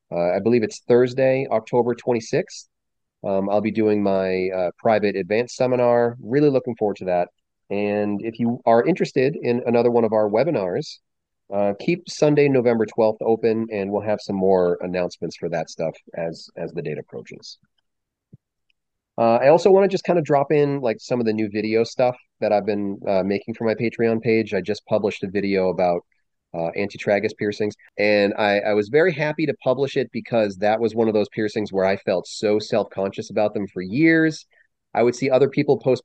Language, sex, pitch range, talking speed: English, male, 105-140 Hz, 195 wpm